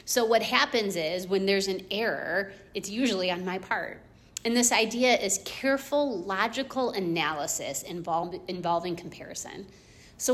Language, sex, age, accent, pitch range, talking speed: English, female, 30-49, American, 190-230 Hz, 135 wpm